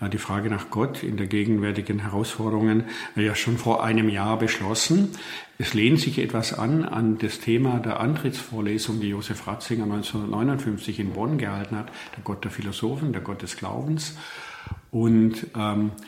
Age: 50-69